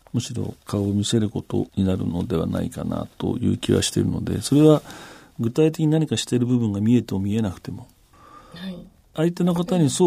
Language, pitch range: Japanese, 100-130 Hz